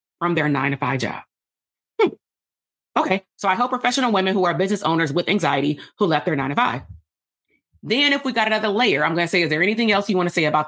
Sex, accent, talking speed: female, American, 235 wpm